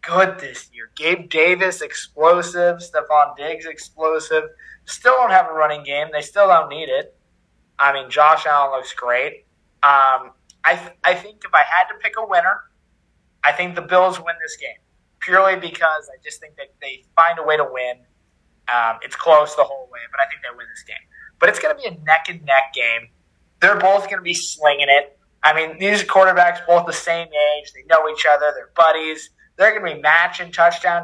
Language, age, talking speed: English, 20-39, 205 wpm